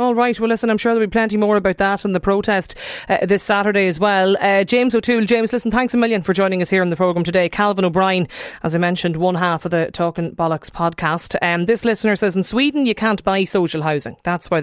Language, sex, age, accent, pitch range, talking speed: English, female, 30-49, Irish, 170-220 Hz, 250 wpm